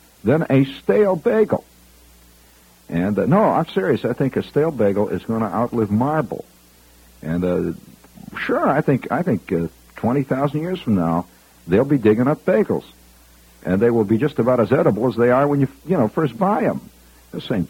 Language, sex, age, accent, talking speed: English, male, 60-79, American, 190 wpm